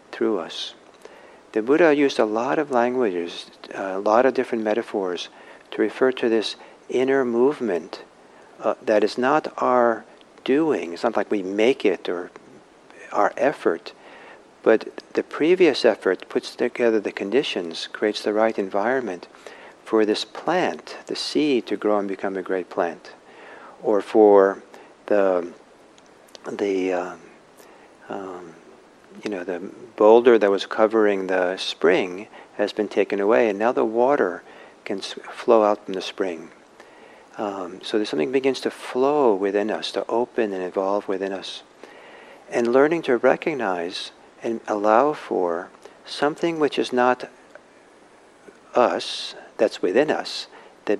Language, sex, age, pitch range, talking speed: English, male, 60-79, 100-140 Hz, 140 wpm